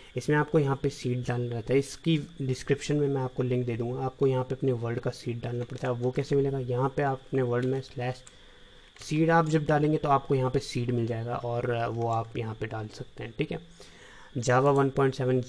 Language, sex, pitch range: Hindi, male, 120-135 Hz